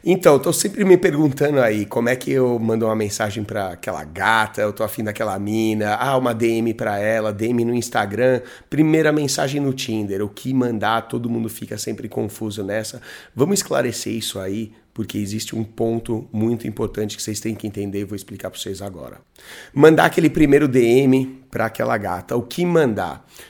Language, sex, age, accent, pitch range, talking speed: Portuguese, male, 30-49, Brazilian, 105-130 Hz, 190 wpm